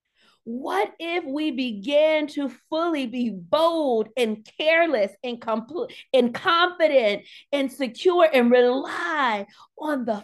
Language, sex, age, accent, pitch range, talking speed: English, female, 40-59, American, 255-330 Hz, 115 wpm